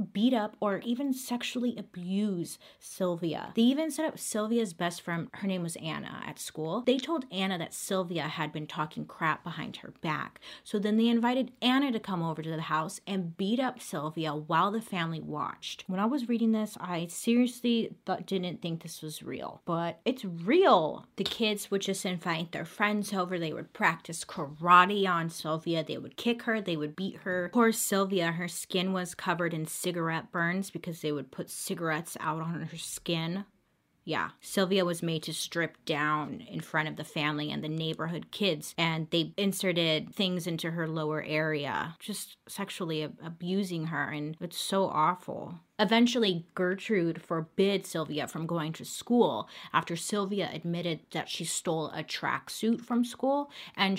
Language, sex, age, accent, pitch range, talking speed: English, female, 30-49, American, 165-210 Hz, 175 wpm